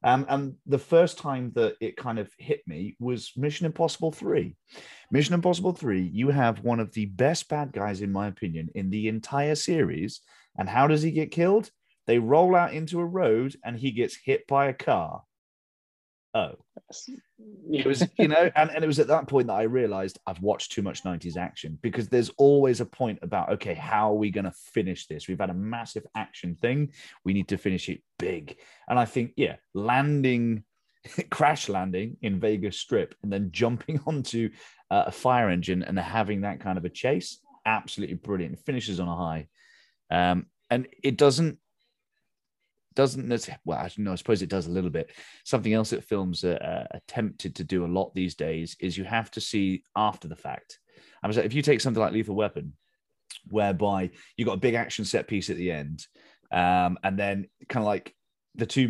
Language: English